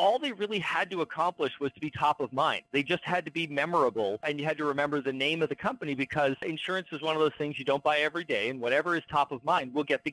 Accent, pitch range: American, 140-170 Hz